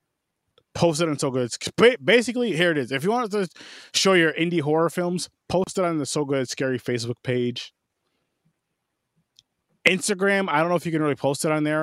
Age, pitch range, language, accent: 20-39, 115-145 Hz, English, American